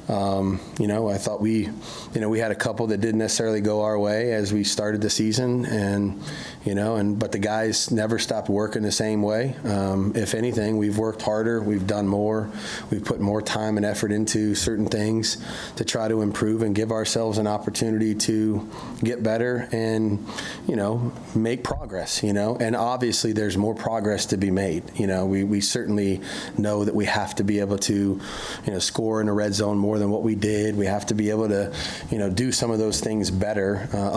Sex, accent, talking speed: male, American, 215 wpm